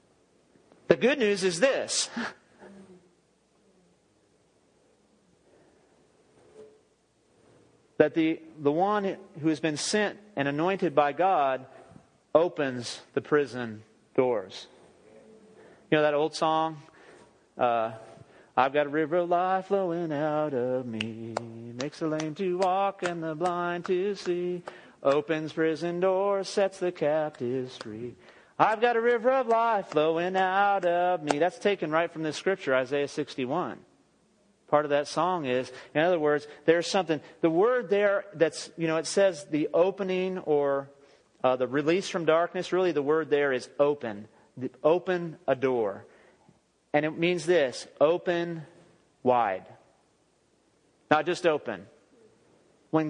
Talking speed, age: 130 wpm, 40-59